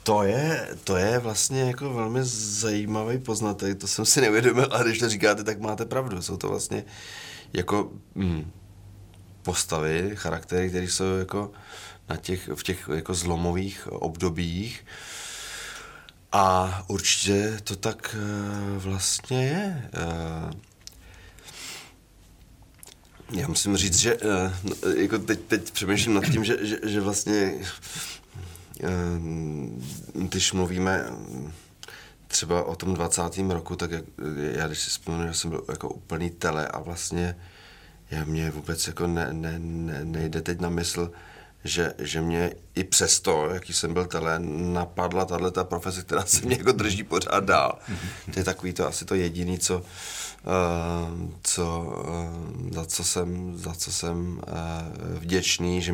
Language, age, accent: Czech, 30-49, native